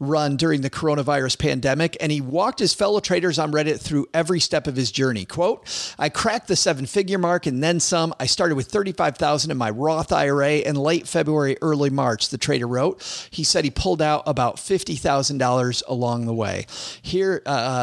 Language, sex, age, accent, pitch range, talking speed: English, male, 40-59, American, 130-160 Hz, 200 wpm